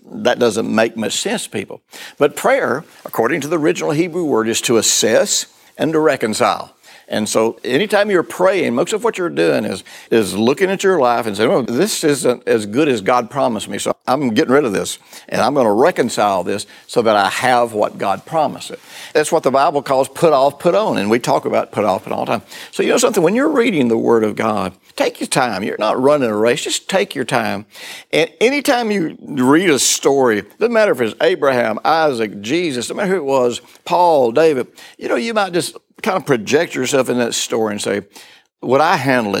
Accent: American